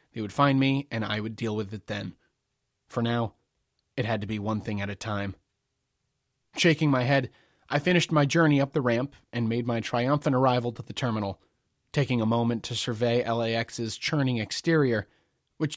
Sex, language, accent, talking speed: male, English, American, 185 wpm